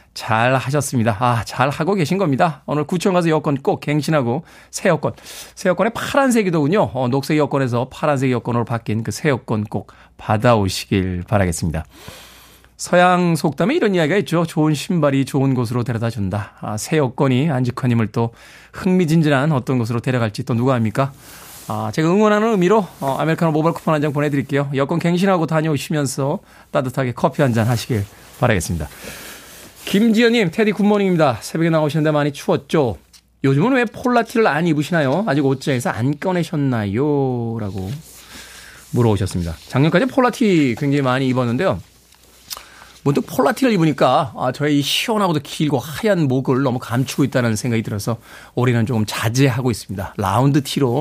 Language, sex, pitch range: Korean, male, 115-160 Hz